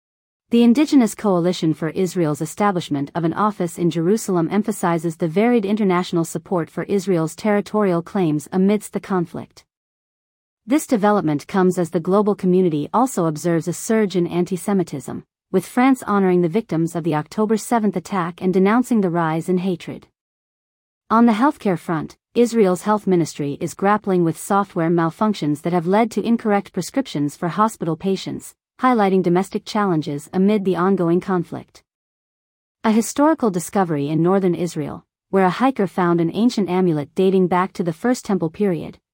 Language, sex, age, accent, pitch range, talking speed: English, female, 40-59, American, 170-210 Hz, 155 wpm